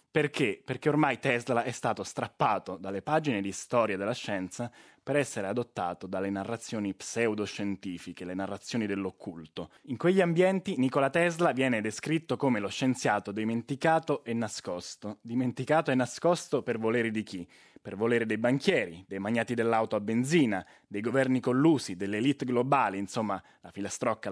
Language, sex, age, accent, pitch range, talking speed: Italian, male, 20-39, native, 105-140 Hz, 145 wpm